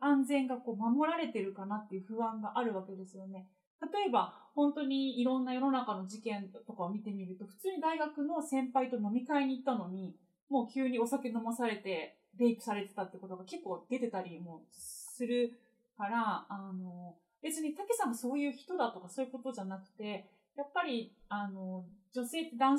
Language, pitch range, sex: Japanese, 205-275 Hz, female